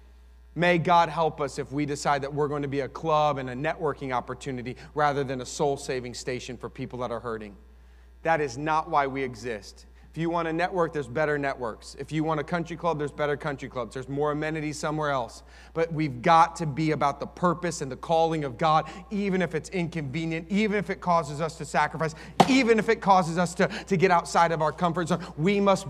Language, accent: English, American